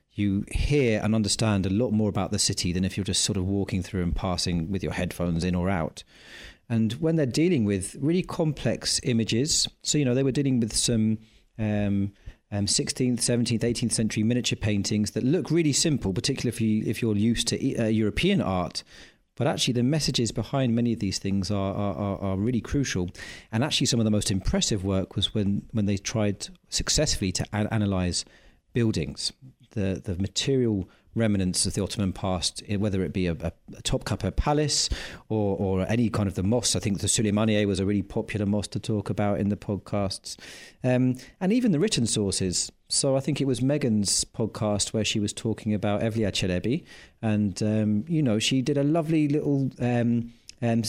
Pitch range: 100-120 Hz